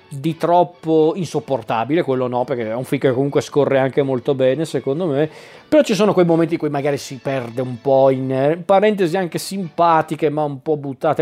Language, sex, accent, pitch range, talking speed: Italian, male, native, 140-175 Hz, 205 wpm